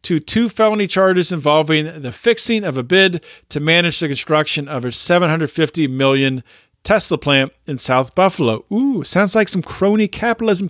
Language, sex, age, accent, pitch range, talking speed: English, male, 40-59, American, 155-240 Hz, 165 wpm